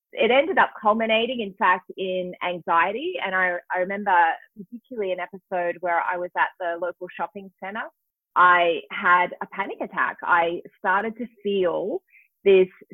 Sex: female